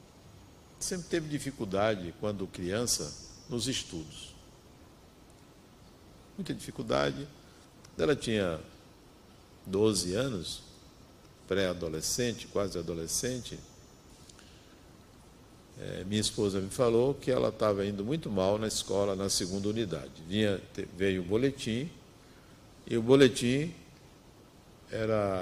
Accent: Brazilian